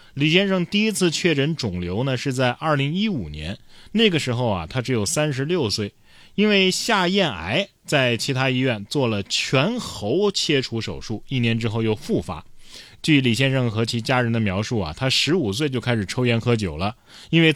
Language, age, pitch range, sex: Chinese, 20-39, 110-170 Hz, male